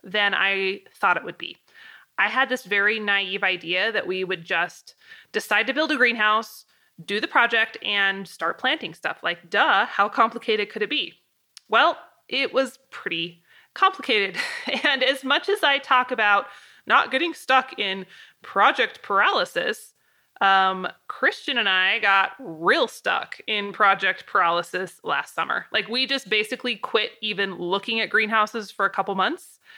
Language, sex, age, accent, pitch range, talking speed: English, female, 20-39, American, 195-255 Hz, 155 wpm